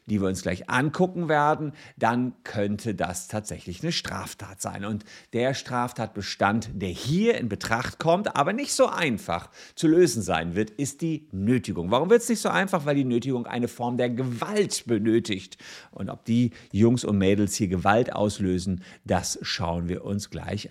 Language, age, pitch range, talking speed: German, 50-69, 100-155 Hz, 175 wpm